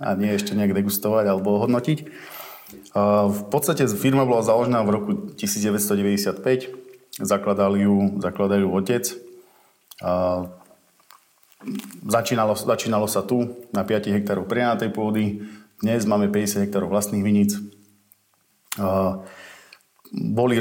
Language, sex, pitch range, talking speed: Slovak, male, 100-115 Hz, 100 wpm